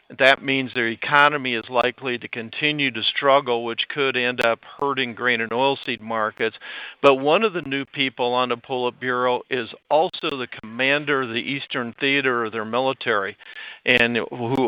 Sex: male